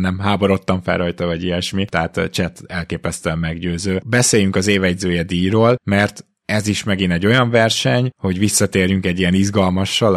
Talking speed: 160 wpm